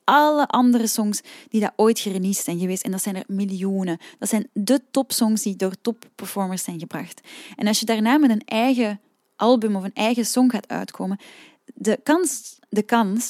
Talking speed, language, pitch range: 195 wpm, Dutch, 190-240 Hz